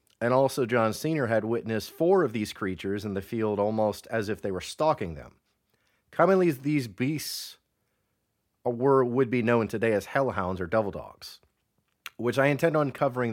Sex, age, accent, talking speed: male, 30-49, American, 170 wpm